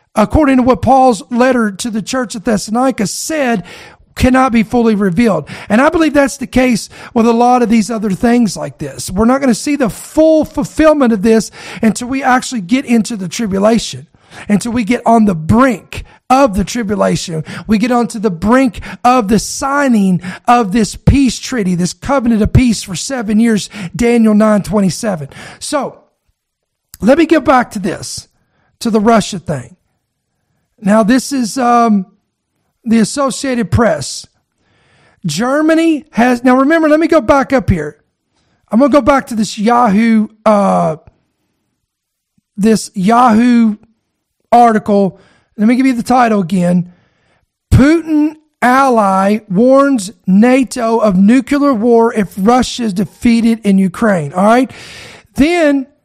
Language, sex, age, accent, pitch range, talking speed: English, male, 50-69, American, 205-255 Hz, 150 wpm